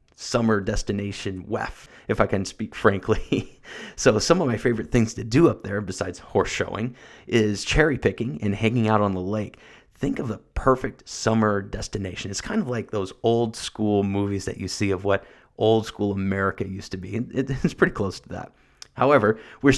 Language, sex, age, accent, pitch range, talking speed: English, male, 30-49, American, 100-120 Hz, 190 wpm